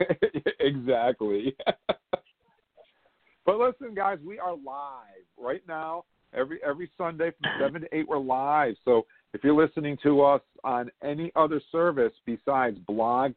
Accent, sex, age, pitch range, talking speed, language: American, male, 50-69, 120-160 Hz, 135 wpm, English